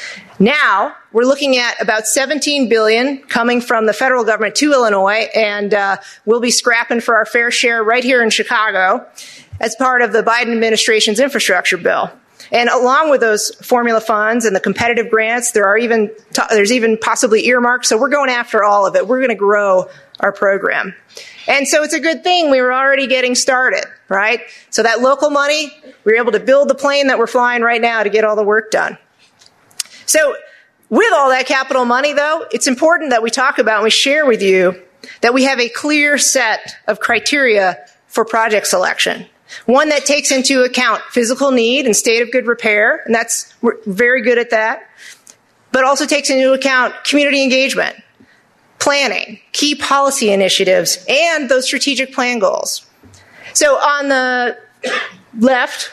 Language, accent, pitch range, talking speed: English, American, 220-270 Hz, 180 wpm